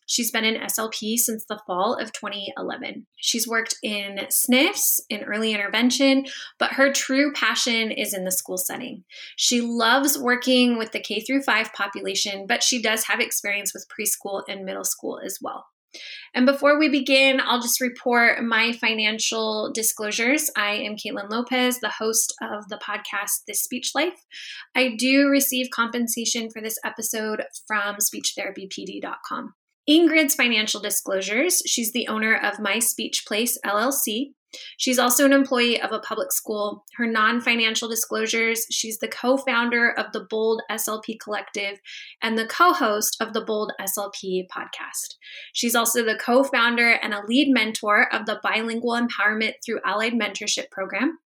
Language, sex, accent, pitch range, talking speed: English, female, American, 210-255 Hz, 150 wpm